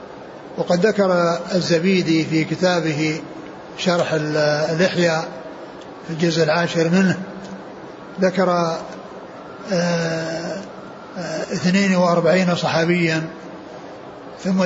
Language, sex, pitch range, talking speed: Arabic, male, 160-180 Hz, 75 wpm